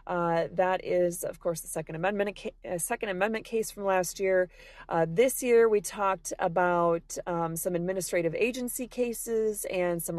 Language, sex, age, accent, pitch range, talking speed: English, female, 30-49, American, 185-230 Hz, 165 wpm